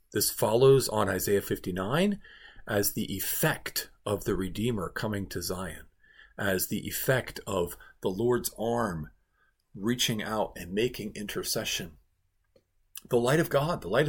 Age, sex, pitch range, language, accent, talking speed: 50-69, male, 115-190 Hz, English, American, 135 wpm